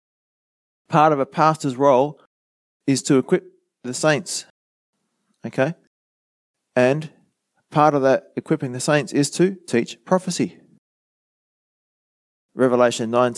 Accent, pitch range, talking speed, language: Australian, 105-140 Hz, 105 wpm, English